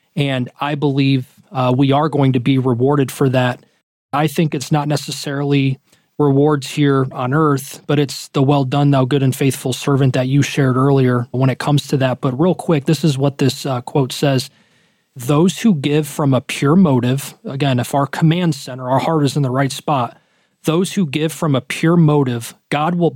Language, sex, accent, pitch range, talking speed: English, male, American, 130-155 Hz, 200 wpm